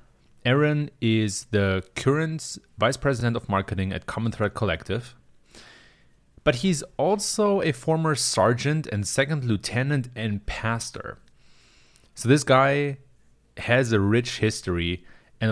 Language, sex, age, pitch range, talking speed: English, male, 30-49, 95-125 Hz, 120 wpm